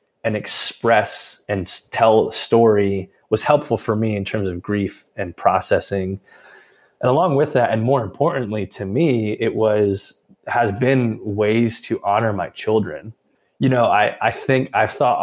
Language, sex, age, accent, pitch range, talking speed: English, male, 20-39, American, 105-130 Hz, 160 wpm